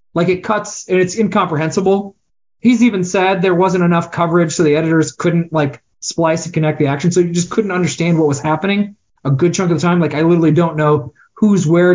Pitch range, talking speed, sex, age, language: 155-195 Hz, 220 wpm, male, 20-39, English